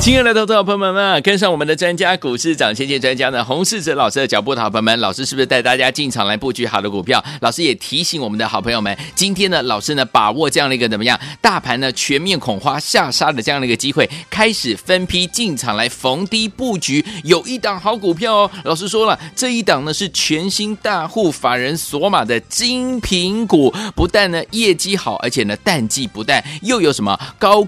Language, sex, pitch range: Chinese, male, 130-200 Hz